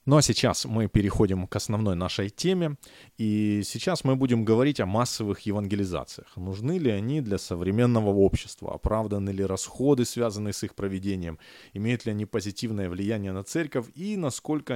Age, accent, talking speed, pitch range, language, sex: 20-39, native, 160 wpm, 100-125 Hz, Ukrainian, male